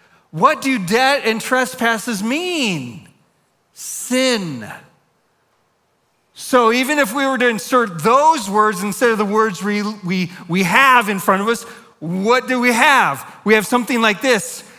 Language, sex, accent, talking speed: English, male, American, 145 wpm